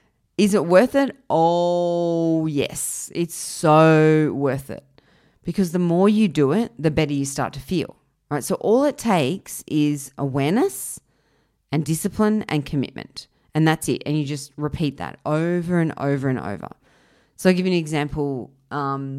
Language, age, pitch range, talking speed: English, 30-49, 140-170 Hz, 165 wpm